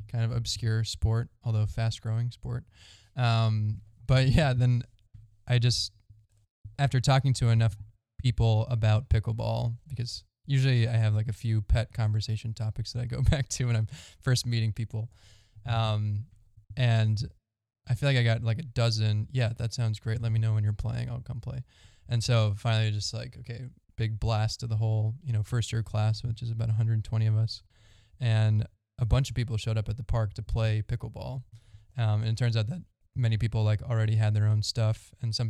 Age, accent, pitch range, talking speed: 10-29, American, 105-120 Hz, 195 wpm